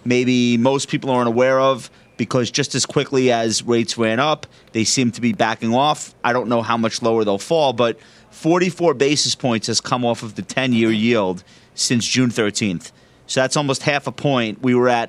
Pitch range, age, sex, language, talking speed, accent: 115-135 Hz, 30-49, male, English, 205 wpm, American